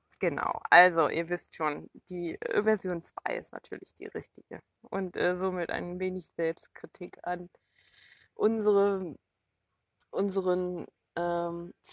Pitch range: 175-220 Hz